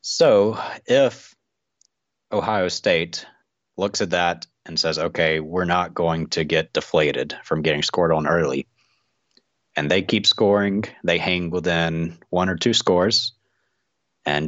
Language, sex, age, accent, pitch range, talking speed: English, male, 30-49, American, 85-105 Hz, 135 wpm